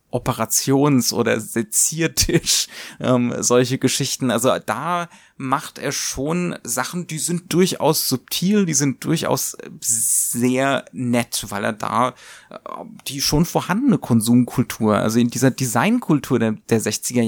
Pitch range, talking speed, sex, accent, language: 120-160 Hz, 120 wpm, male, German, German